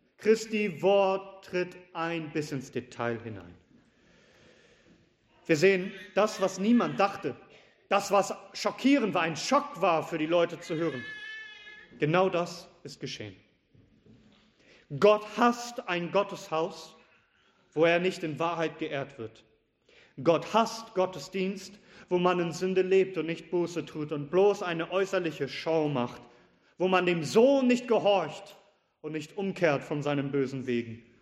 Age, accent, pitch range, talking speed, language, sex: 40-59, German, 155-205 Hz, 140 wpm, German, male